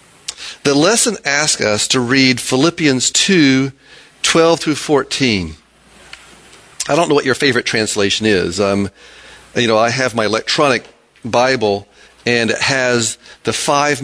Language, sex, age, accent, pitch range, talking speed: English, male, 40-59, American, 105-140 Hz, 135 wpm